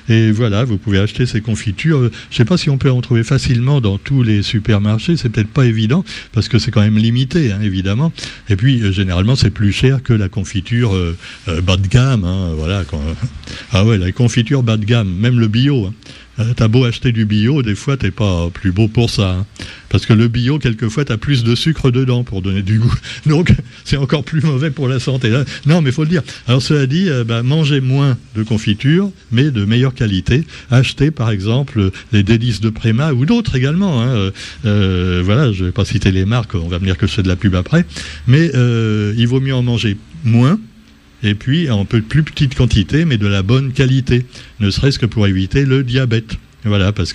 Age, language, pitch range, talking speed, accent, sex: 60-79, French, 100-130 Hz, 215 wpm, French, male